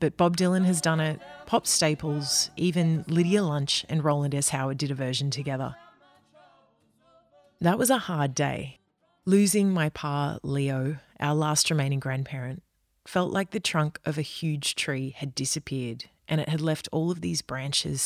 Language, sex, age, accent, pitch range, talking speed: English, female, 30-49, Australian, 135-175 Hz, 165 wpm